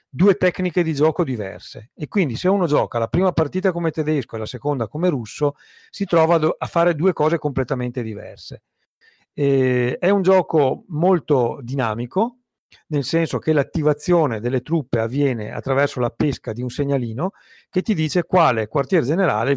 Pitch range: 125-165 Hz